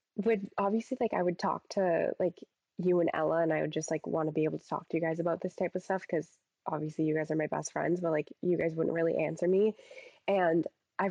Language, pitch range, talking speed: English, 165-195 Hz, 260 wpm